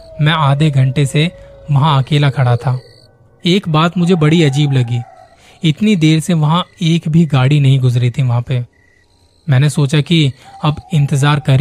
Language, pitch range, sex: Hindi, 125-155 Hz, male